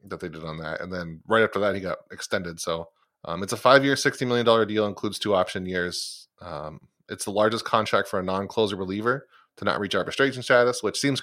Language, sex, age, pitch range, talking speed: English, male, 30-49, 95-115 Hz, 225 wpm